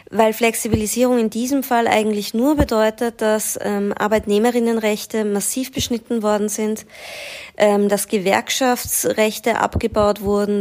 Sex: female